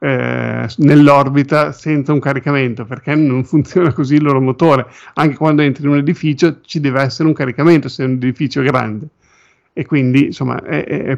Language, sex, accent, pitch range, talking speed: Italian, male, native, 130-150 Hz, 170 wpm